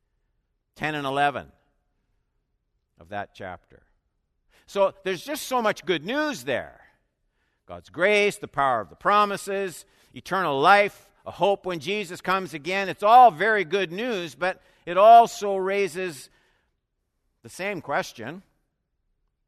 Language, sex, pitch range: English, male, 145-200 Hz